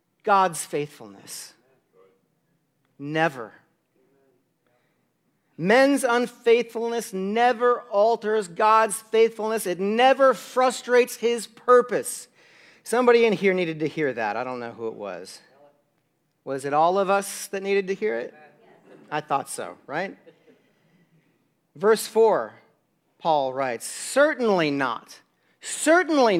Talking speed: 110 wpm